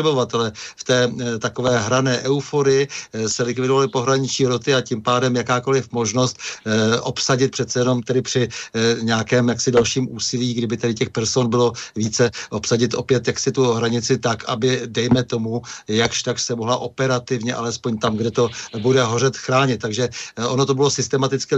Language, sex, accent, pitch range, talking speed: Czech, male, native, 110-125 Hz, 165 wpm